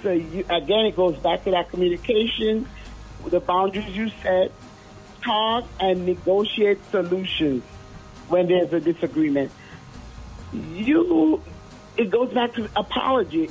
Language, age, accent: English, 50-69, American